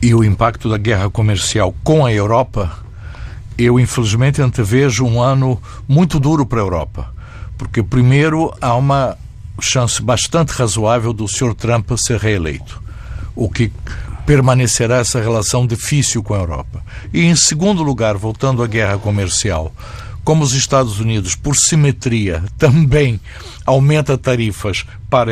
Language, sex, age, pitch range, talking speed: Portuguese, male, 60-79, 105-130 Hz, 135 wpm